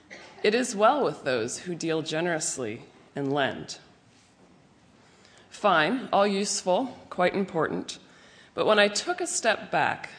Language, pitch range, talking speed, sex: English, 155-205 Hz, 130 wpm, female